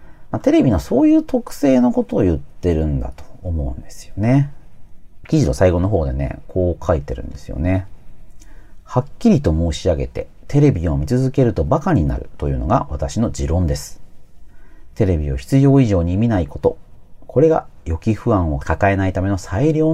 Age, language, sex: 40-59, Japanese, male